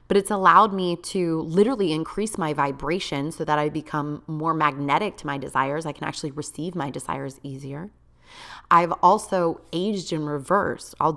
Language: English